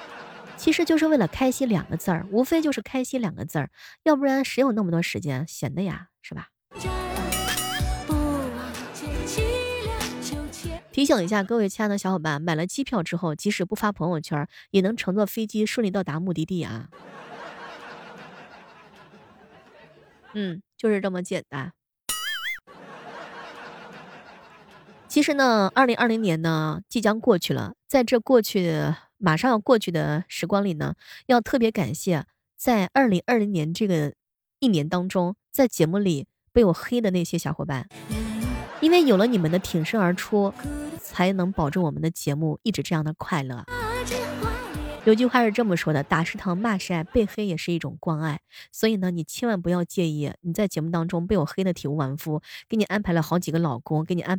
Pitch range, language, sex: 160-225 Hz, Chinese, female